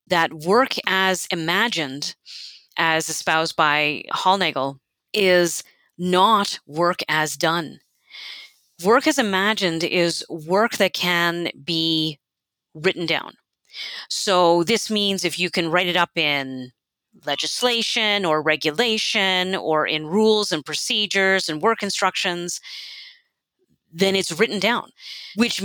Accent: American